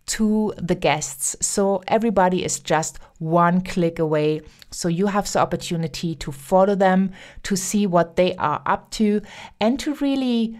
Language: English